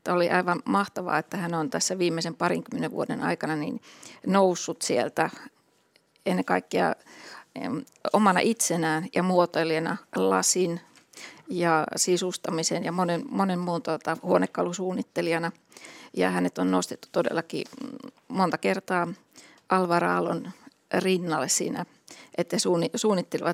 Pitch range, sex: 175-220 Hz, female